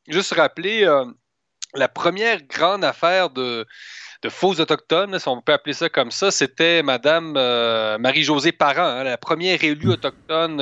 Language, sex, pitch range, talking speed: French, male, 130-175 Hz, 165 wpm